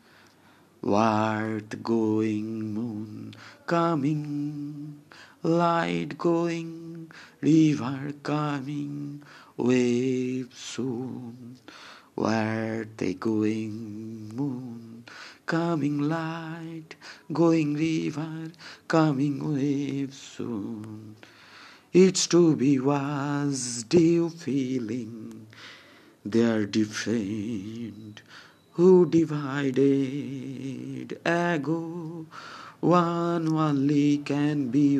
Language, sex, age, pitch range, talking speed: Bengali, male, 50-69, 115-165 Hz, 60 wpm